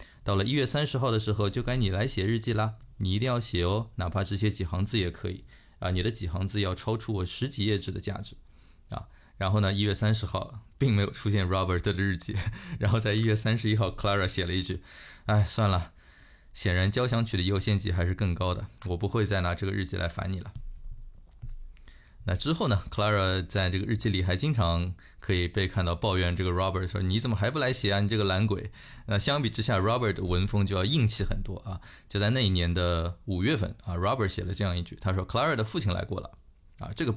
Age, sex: 20-39, male